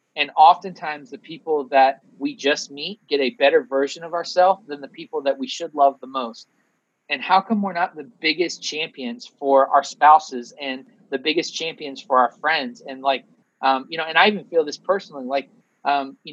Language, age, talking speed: English, 30-49, 200 wpm